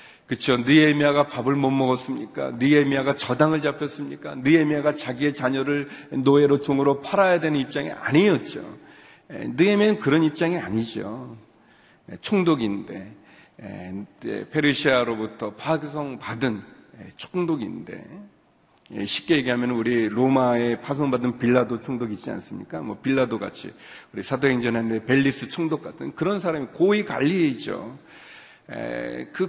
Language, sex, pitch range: Korean, male, 120-155 Hz